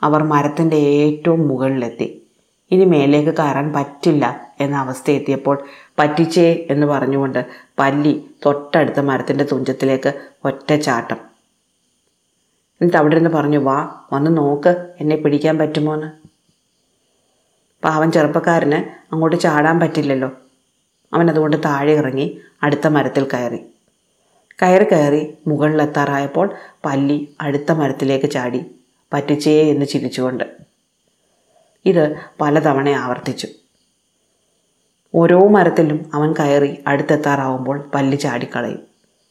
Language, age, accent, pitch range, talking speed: Malayalam, 30-49, native, 140-155 Hz, 90 wpm